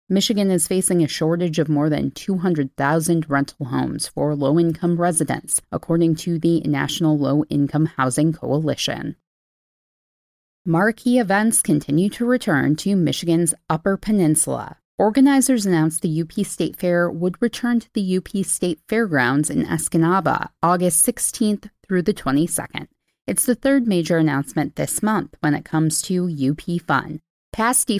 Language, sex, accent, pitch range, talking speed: English, female, American, 155-200 Hz, 135 wpm